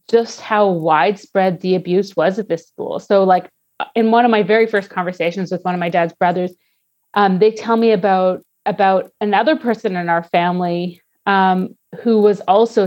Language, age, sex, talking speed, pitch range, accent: English, 30-49, female, 180 wpm, 180-205 Hz, American